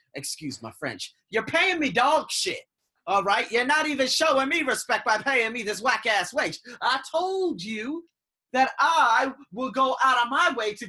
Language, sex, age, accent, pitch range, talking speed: English, male, 30-49, American, 155-250 Hz, 195 wpm